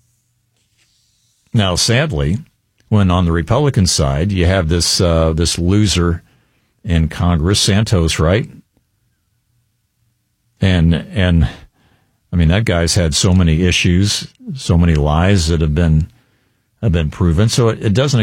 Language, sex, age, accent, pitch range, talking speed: English, male, 50-69, American, 85-115 Hz, 130 wpm